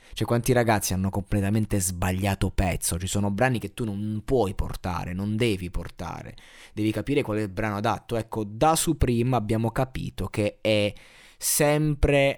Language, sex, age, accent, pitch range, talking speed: Italian, male, 20-39, native, 105-130 Hz, 160 wpm